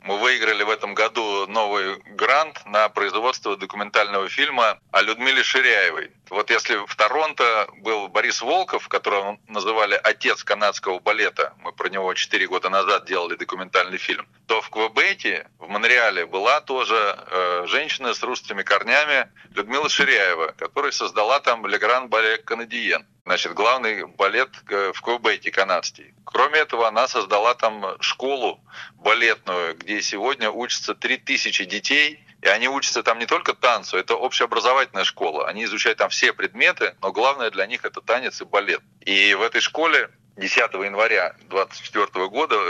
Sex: male